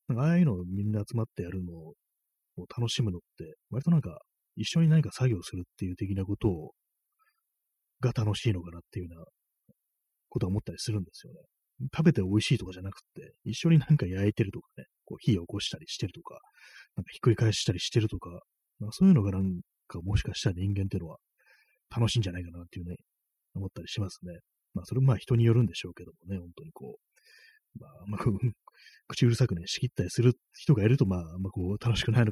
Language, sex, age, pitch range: Japanese, male, 30-49, 90-120 Hz